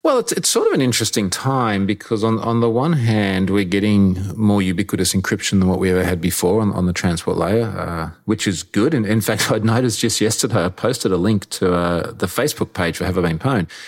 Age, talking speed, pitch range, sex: 30-49, 240 wpm, 90-115 Hz, male